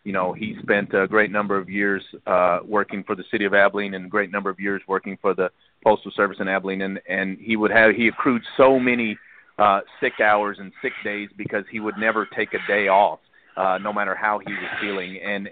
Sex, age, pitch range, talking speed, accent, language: male, 40-59, 95-105 Hz, 230 wpm, American, English